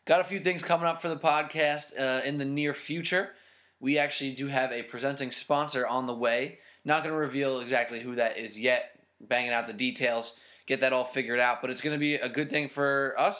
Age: 20-39